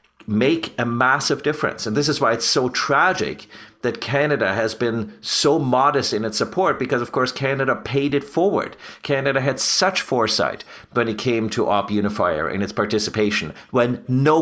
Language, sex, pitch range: English, male, 105-130 Hz